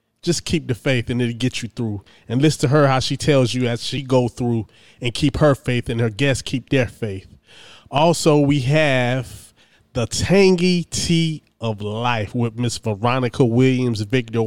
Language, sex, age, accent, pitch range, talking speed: English, male, 20-39, American, 115-145 Hz, 185 wpm